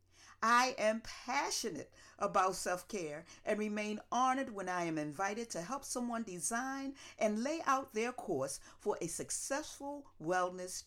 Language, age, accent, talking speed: English, 50-69, American, 140 wpm